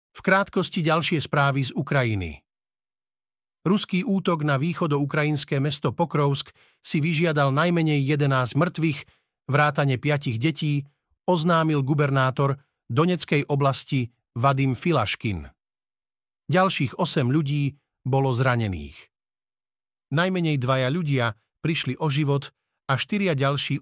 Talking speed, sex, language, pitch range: 100 wpm, male, Slovak, 130-160 Hz